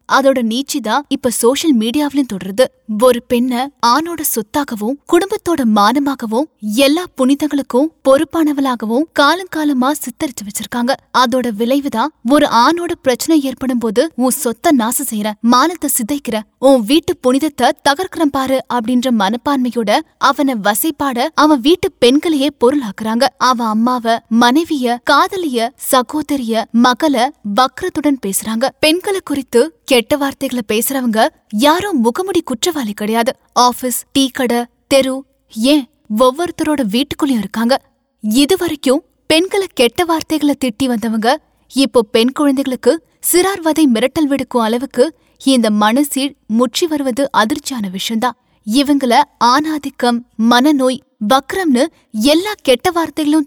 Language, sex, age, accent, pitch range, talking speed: Tamil, female, 20-39, native, 240-295 Hz, 85 wpm